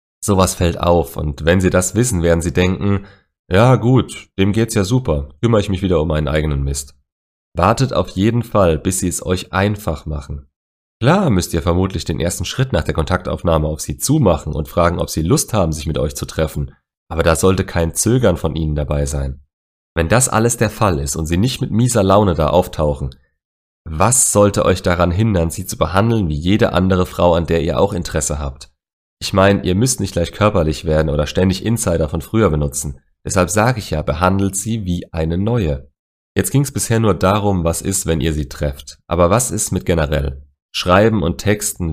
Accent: German